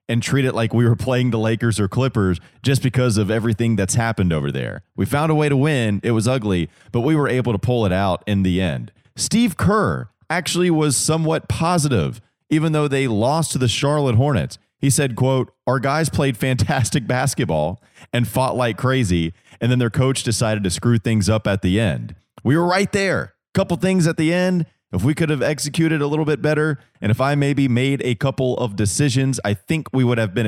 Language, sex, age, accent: English, male, 30-49, American